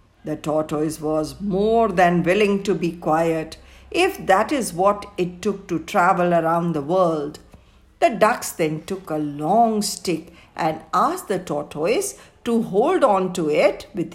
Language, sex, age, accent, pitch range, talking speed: Hindi, female, 50-69, native, 165-250 Hz, 155 wpm